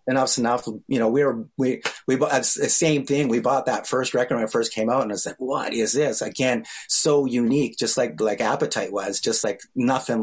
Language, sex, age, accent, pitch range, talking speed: English, male, 30-49, American, 115-145 Hz, 235 wpm